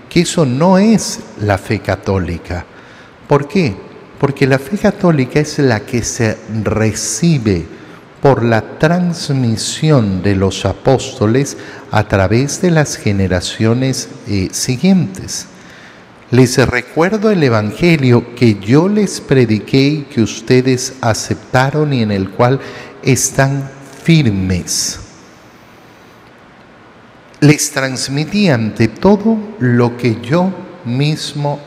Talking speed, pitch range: 105 wpm, 110-150 Hz